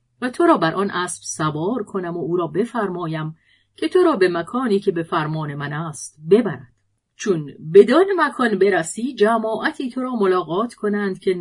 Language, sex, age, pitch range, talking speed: Persian, female, 40-59, 165-225 Hz, 175 wpm